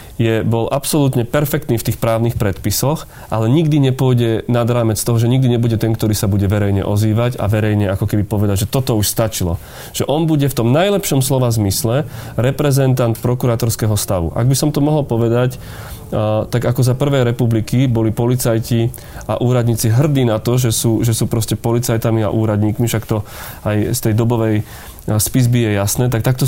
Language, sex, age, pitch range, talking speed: Slovak, male, 30-49, 110-130 Hz, 180 wpm